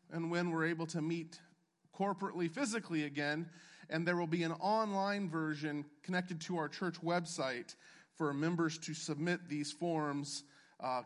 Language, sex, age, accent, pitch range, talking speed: English, male, 40-59, American, 155-190 Hz, 150 wpm